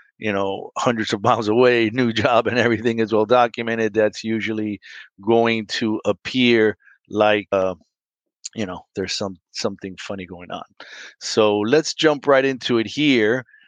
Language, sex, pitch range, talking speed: English, male, 105-120 Hz, 155 wpm